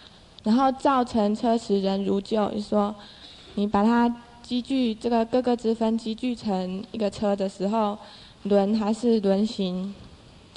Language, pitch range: Chinese, 200-235 Hz